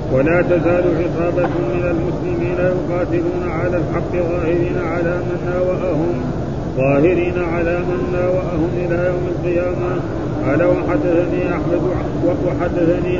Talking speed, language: 105 wpm, Arabic